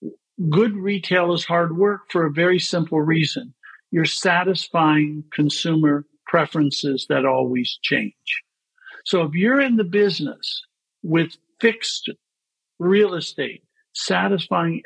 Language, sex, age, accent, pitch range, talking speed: English, male, 50-69, American, 160-195 Hz, 115 wpm